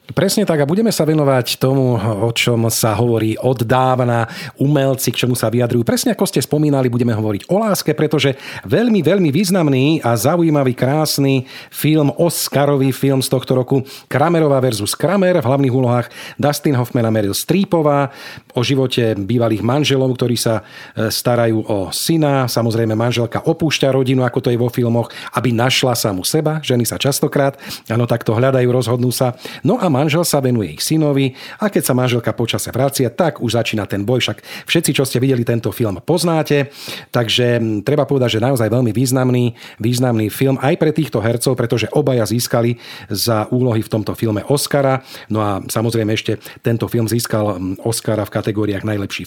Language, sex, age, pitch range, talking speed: Slovak, male, 40-59, 115-145 Hz, 170 wpm